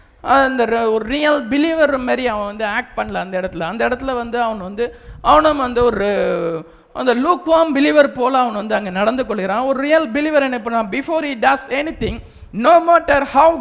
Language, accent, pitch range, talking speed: English, Indian, 210-275 Hz, 100 wpm